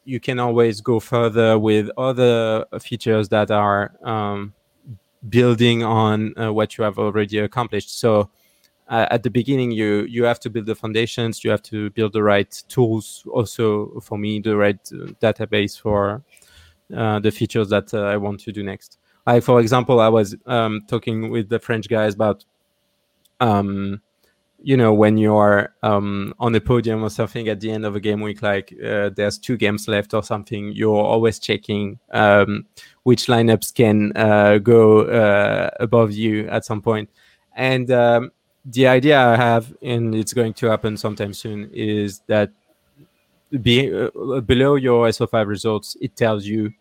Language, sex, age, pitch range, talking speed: English, male, 20-39, 105-120 Hz, 170 wpm